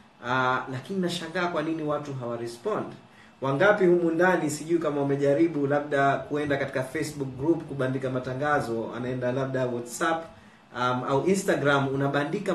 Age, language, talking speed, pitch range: 30-49, Swahili, 130 wpm, 125-145 Hz